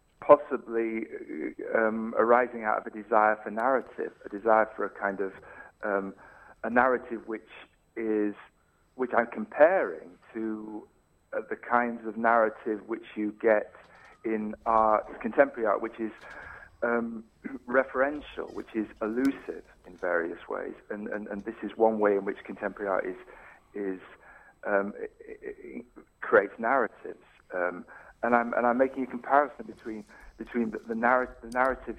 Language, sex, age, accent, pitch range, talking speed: English, male, 50-69, British, 105-120 Hz, 150 wpm